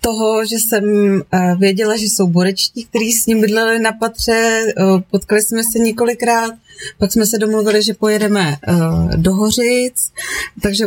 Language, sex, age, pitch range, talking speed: Czech, female, 30-49, 200-220 Hz, 145 wpm